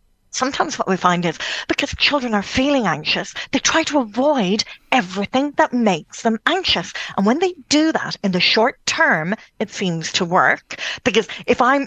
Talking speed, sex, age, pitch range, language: 175 wpm, female, 40-59, 190-260 Hz, English